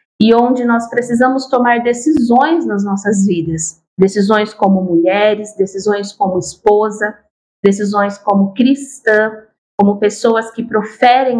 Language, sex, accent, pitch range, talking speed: Portuguese, female, Brazilian, 205-245 Hz, 115 wpm